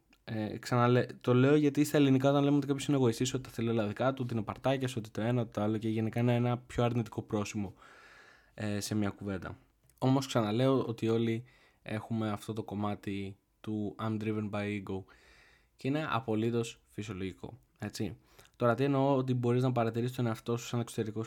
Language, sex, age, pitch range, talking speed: Greek, male, 20-39, 110-130 Hz, 190 wpm